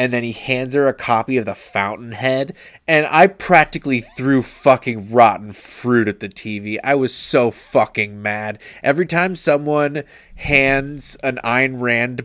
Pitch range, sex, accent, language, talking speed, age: 115-135 Hz, male, American, English, 155 wpm, 20-39